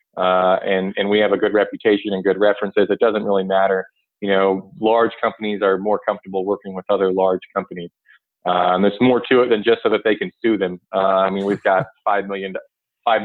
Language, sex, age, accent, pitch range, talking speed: English, male, 30-49, American, 95-115 Hz, 220 wpm